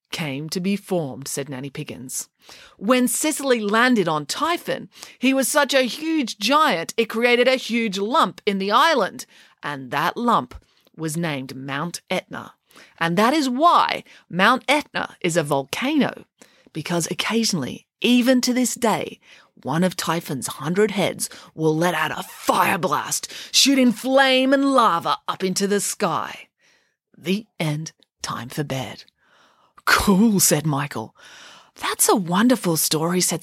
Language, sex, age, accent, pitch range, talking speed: English, female, 30-49, Australian, 170-250 Hz, 145 wpm